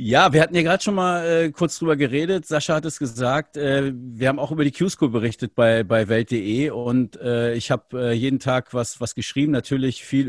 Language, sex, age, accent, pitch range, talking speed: German, male, 50-69, German, 125-170 Hz, 220 wpm